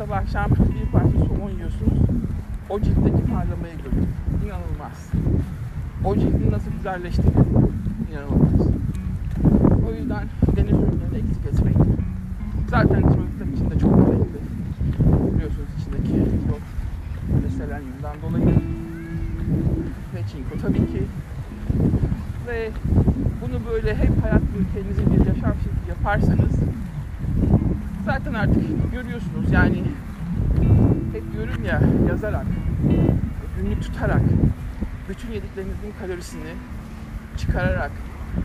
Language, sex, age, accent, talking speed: Turkish, male, 60-79, native, 95 wpm